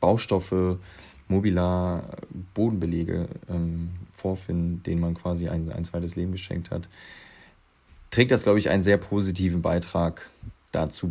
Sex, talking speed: male, 125 wpm